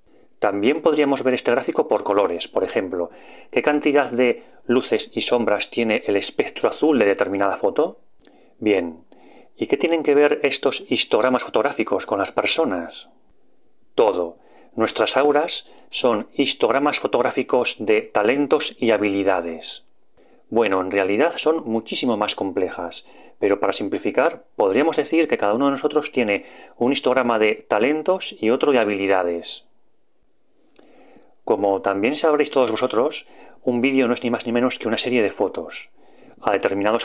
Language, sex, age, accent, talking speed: Spanish, male, 30-49, Spanish, 145 wpm